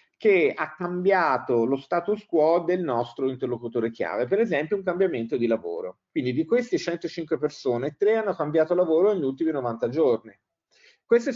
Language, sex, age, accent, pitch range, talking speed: Italian, male, 50-69, native, 130-205 Hz, 160 wpm